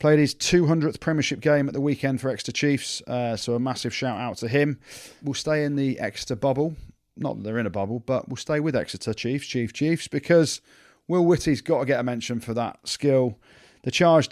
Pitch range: 120-150 Hz